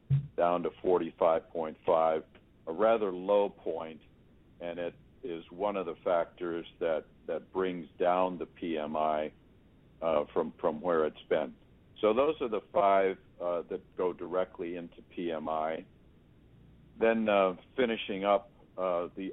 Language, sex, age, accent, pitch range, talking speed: English, male, 60-79, American, 85-100 Hz, 145 wpm